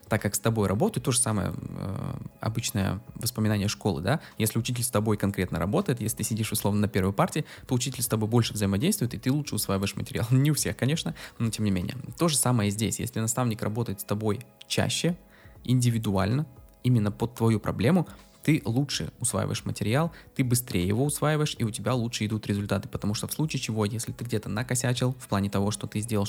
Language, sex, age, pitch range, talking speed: Russian, male, 20-39, 105-130 Hz, 205 wpm